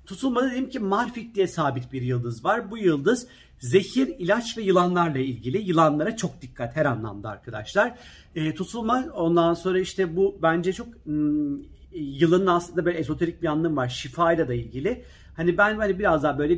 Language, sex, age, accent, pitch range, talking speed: Turkish, male, 40-59, native, 145-180 Hz, 165 wpm